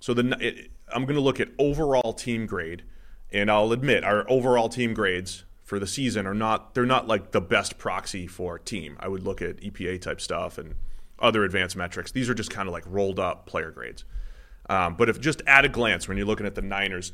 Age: 30-49